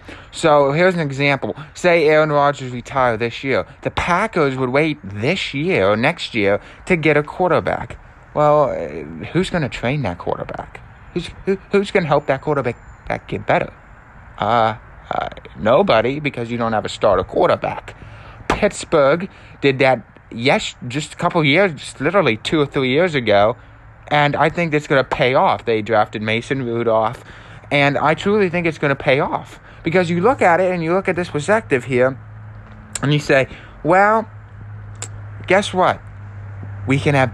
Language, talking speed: English, 175 wpm